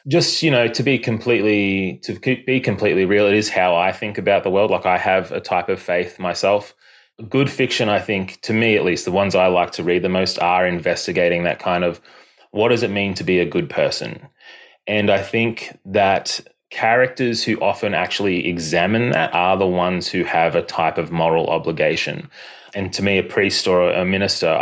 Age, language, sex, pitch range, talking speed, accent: 20-39, English, male, 90-110 Hz, 205 wpm, Australian